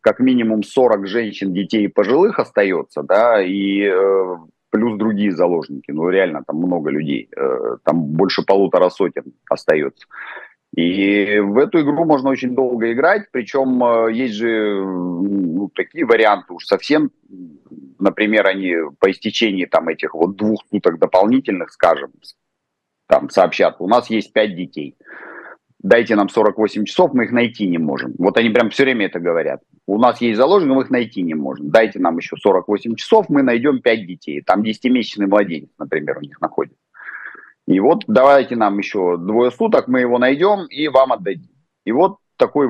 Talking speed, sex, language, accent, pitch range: 165 wpm, male, Russian, native, 100-125 Hz